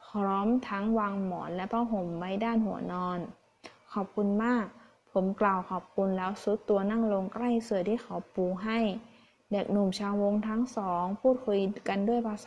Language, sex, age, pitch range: Thai, female, 20-39, 185-225 Hz